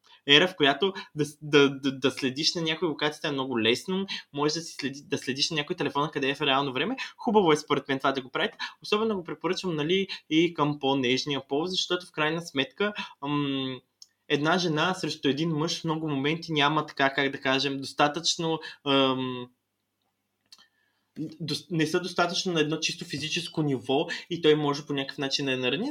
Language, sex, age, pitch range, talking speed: Bulgarian, male, 20-39, 140-185 Hz, 190 wpm